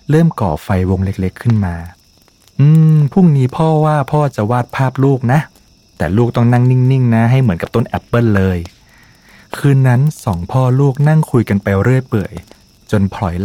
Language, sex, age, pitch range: Thai, male, 30-49, 105-140 Hz